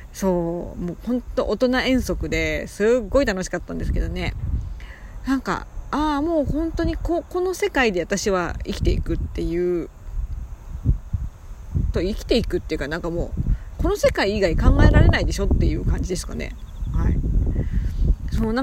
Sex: female